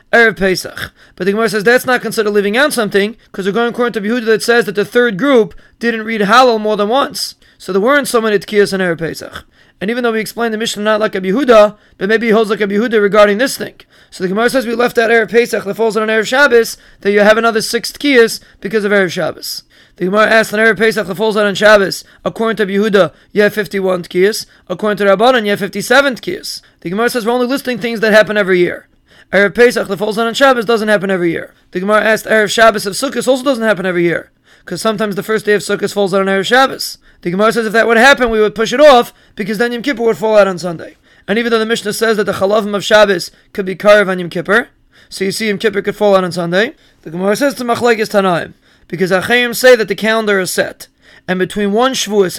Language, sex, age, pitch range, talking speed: English, male, 20-39, 200-230 Hz, 250 wpm